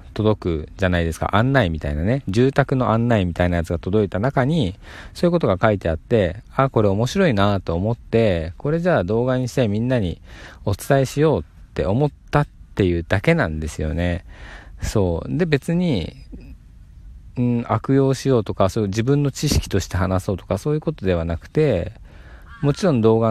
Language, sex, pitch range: Japanese, male, 85-125 Hz